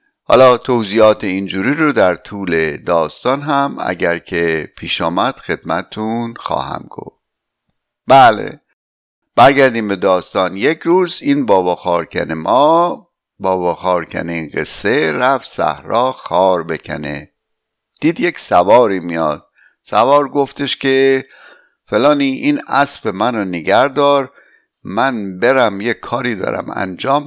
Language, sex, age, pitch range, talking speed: Persian, male, 60-79, 90-140 Hz, 115 wpm